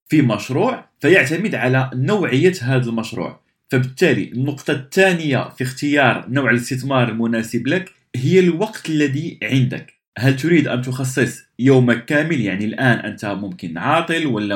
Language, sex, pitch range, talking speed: Arabic, male, 115-140 Hz, 130 wpm